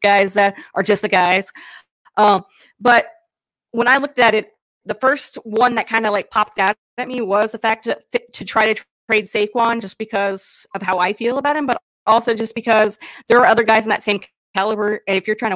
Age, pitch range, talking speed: 30-49, 195-230 Hz, 225 wpm